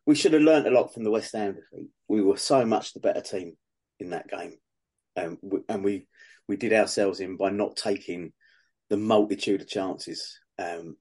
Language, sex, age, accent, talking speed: English, male, 30-49, British, 195 wpm